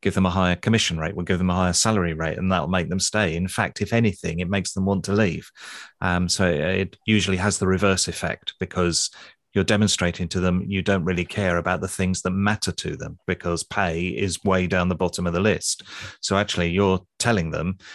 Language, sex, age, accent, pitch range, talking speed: English, male, 30-49, British, 90-105 Hz, 225 wpm